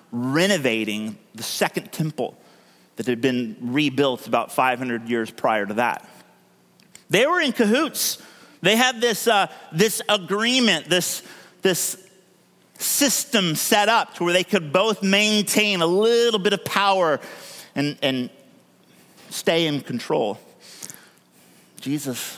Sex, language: male, English